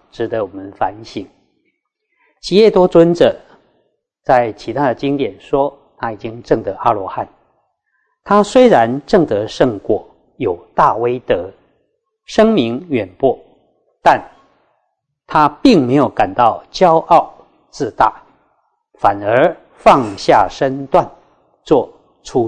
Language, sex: Chinese, male